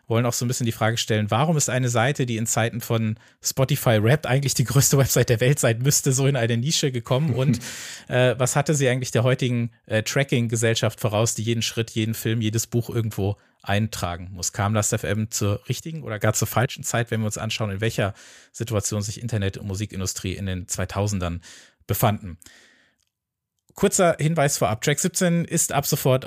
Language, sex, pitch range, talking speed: German, male, 105-130 Hz, 195 wpm